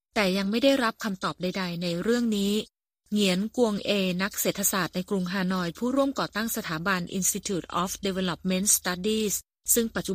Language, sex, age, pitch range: Thai, female, 30-49, 180-220 Hz